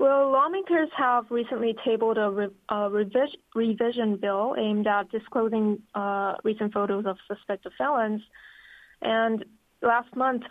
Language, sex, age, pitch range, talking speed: English, female, 20-39, 210-240 Hz, 125 wpm